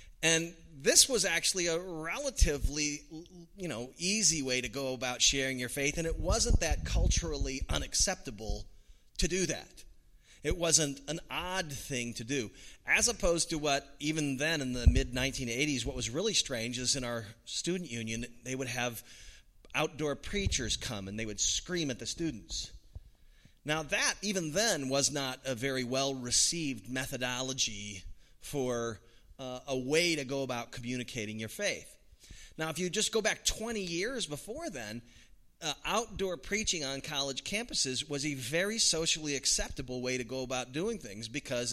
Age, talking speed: 30-49, 160 wpm